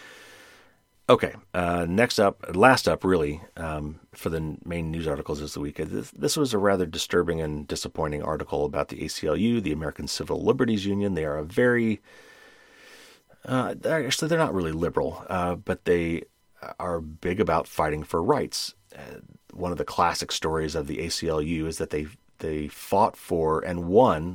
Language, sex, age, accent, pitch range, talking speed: English, male, 30-49, American, 80-100 Hz, 175 wpm